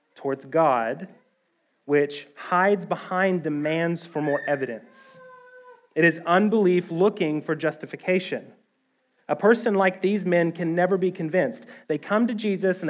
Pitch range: 140-195 Hz